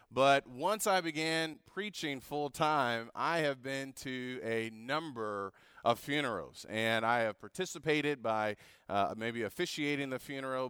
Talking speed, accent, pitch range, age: 140 wpm, American, 120-145 Hz, 30-49